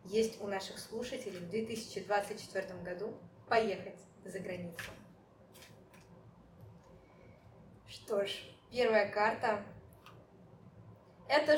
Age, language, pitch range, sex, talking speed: 20-39, Russian, 205-245 Hz, female, 80 wpm